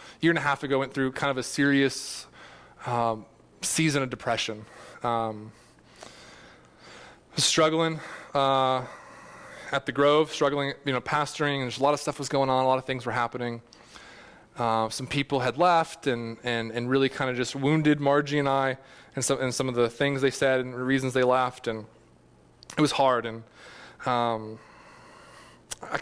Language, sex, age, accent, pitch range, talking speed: English, male, 20-39, American, 120-145 Hz, 180 wpm